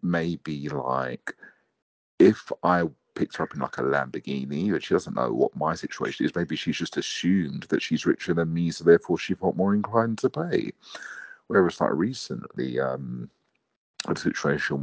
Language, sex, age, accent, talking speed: English, male, 40-59, British, 170 wpm